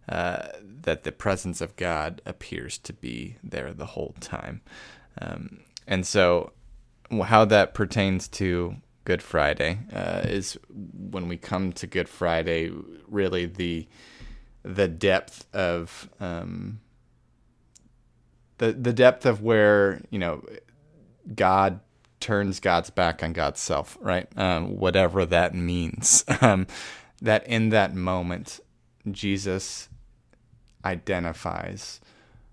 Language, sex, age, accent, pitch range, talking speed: English, male, 20-39, American, 85-105 Hz, 115 wpm